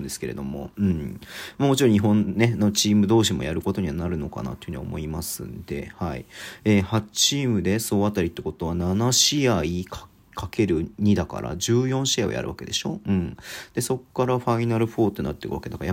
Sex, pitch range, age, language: male, 90-120 Hz, 40-59, Japanese